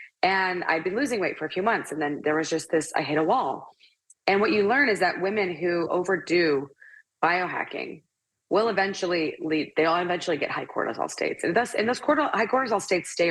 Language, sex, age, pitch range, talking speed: English, female, 20-39, 145-195 Hz, 210 wpm